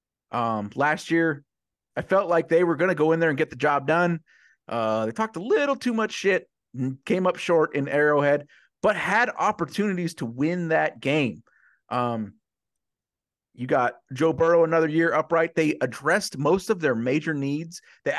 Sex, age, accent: male, 30-49, American